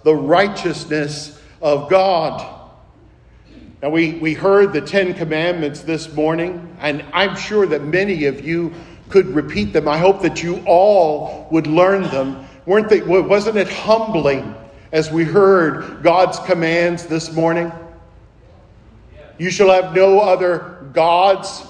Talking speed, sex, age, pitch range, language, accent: 130 wpm, male, 50-69, 170-200 Hz, English, American